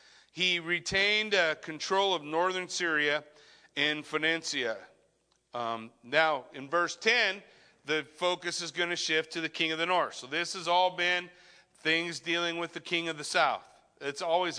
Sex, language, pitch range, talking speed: male, English, 150-185 Hz, 165 wpm